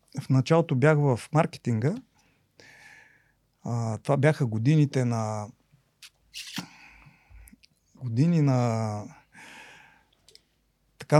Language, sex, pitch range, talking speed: Bulgarian, male, 110-140 Hz, 70 wpm